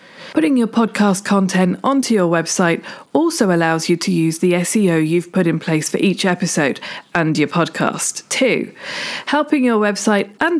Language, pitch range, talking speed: English, 170-225 Hz, 165 wpm